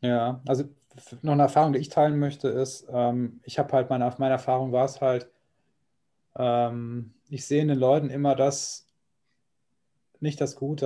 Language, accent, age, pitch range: German, German, 20-39, 120-135 Hz